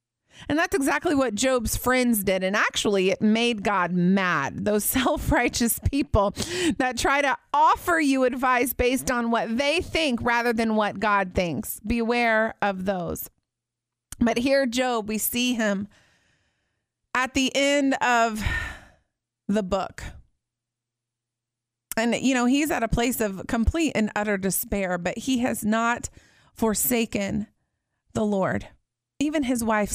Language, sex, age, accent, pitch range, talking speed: English, female, 30-49, American, 180-240 Hz, 140 wpm